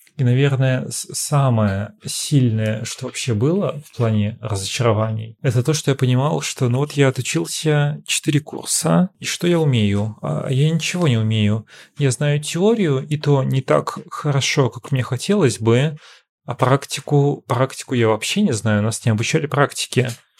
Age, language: 30-49, Russian